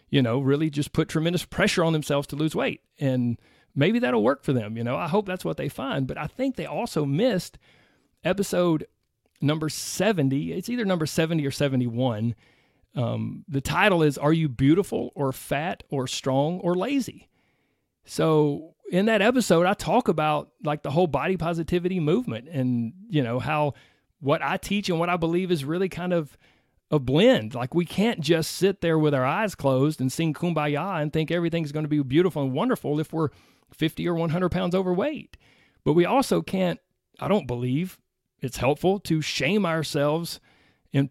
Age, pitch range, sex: 40-59, 130-175 Hz, male